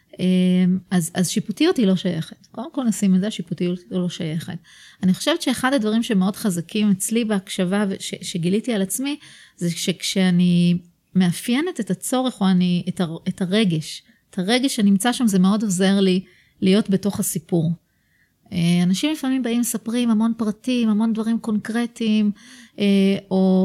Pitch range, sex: 185-225 Hz, female